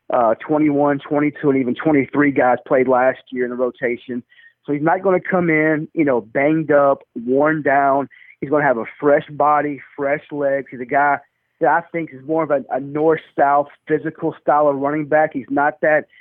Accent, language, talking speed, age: American, English, 205 wpm, 30-49